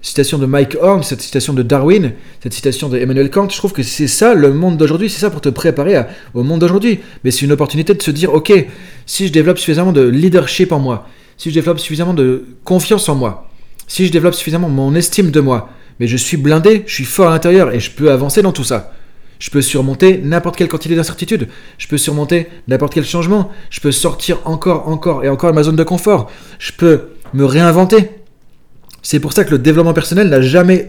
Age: 30-49